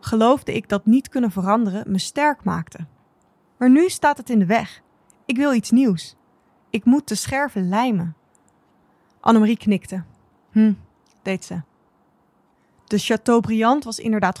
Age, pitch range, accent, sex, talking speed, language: 20-39, 190-230 Hz, Dutch, female, 140 wpm, Dutch